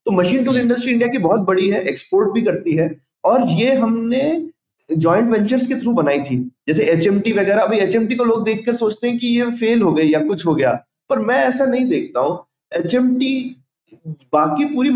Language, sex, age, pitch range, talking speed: Hindi, male, 20-39, 190-260 Hz, 200 wpm